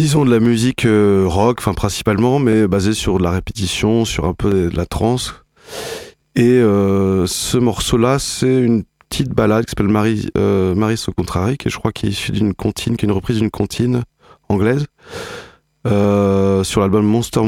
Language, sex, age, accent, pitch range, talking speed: French, male, 20-39, French, 100-125 Hz, 160 wpm